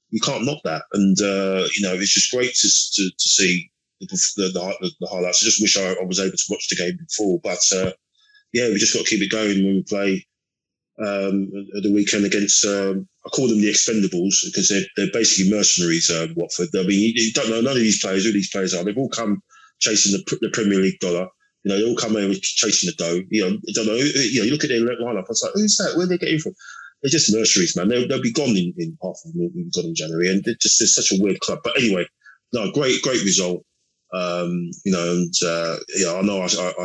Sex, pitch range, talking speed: male, 90-115 Hz, 255 wpm